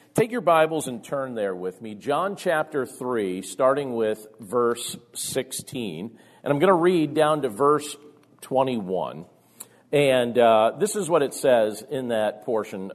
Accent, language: American, English